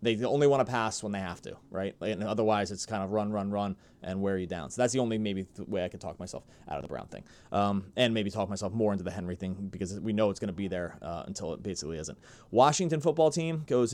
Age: 30-49